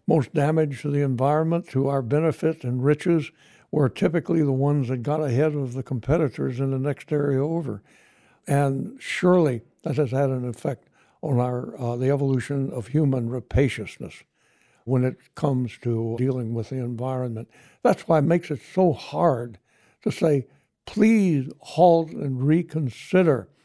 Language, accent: English, American